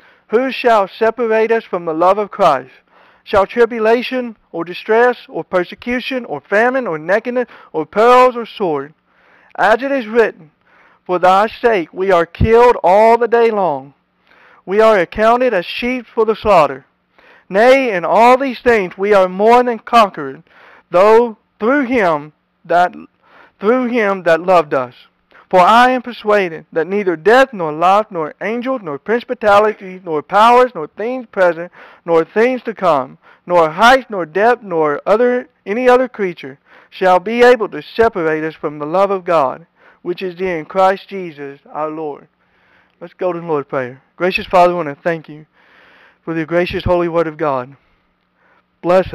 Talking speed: 165 wpm